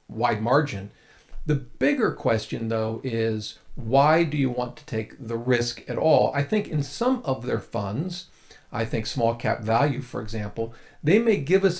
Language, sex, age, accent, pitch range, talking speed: English, male, 50-69, American, 115-150 Hz, 180 wpm